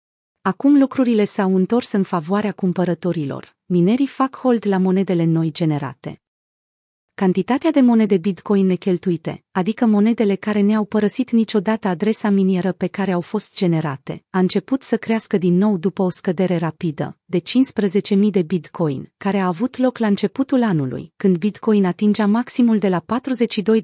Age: 30-49